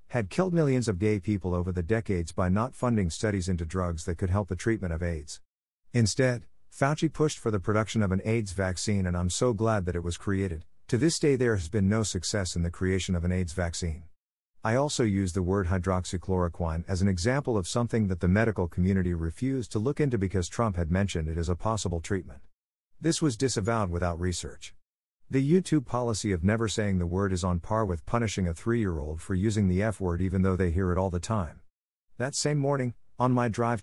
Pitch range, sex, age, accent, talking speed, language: 90-115 Hz, male, 50-69, American, 215 wpm, English